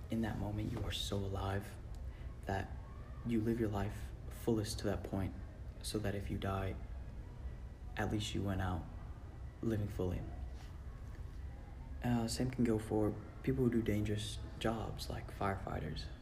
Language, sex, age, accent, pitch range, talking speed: English, male, 20-39, American, 95-110 Hz, 150 wpm